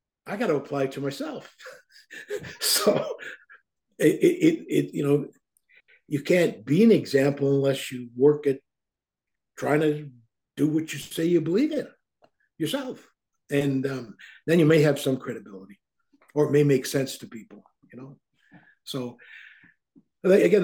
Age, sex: 60-79, male